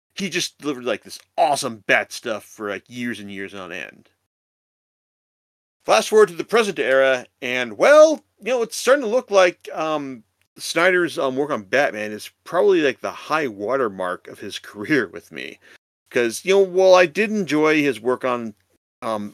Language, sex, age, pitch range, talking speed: English, male, 40-59, 100-145 Hz, 180 wpm